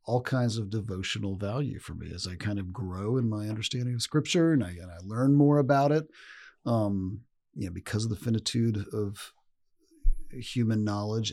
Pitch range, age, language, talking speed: 100-125 Hz, 40-59, English, 185 wpm